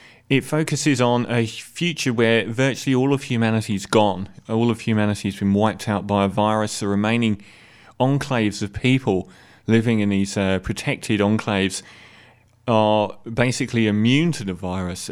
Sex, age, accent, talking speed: male, 30-49, British, 155 wpm